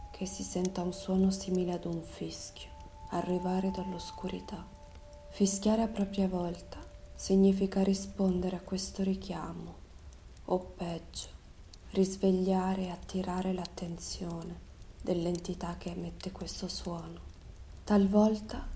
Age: 20-39